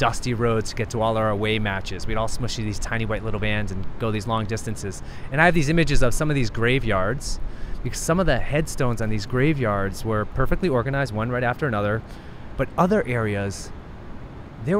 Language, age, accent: English, 30-49, American